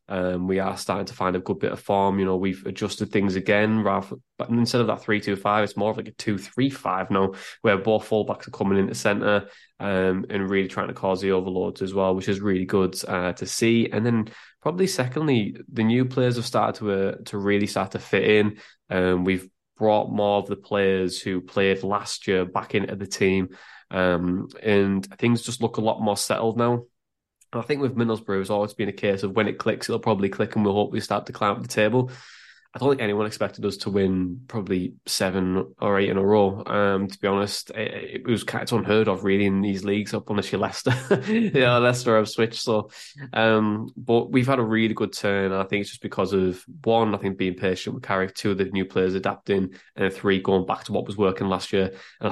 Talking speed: 230 wpm